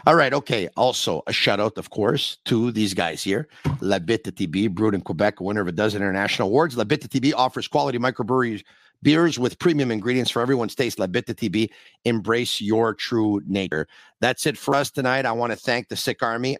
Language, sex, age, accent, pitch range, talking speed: English, male, 50-69, American, 105-130 Hz, 195 wpm